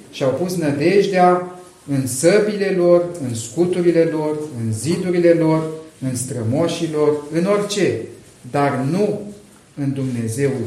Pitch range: 130-185 Hz